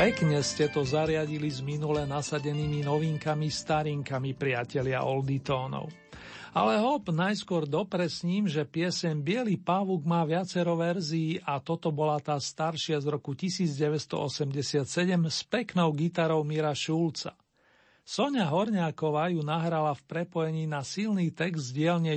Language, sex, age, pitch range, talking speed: Slovak, male, 50-69, 150-175 Hz, 125 wpm